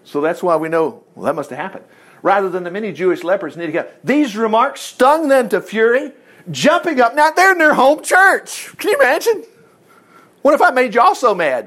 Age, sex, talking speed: 50-69, male, 225 wpm